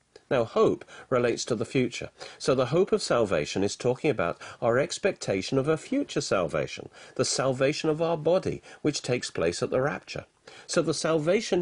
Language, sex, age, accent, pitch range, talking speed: English, male, 40-59, British, 115-170 Hz, 175 wpm